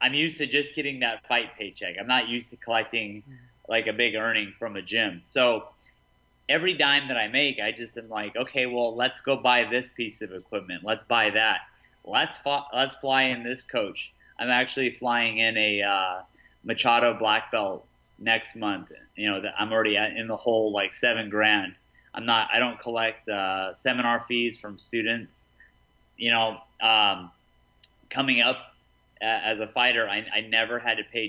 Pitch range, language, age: 105-125 Hz, English, 30-49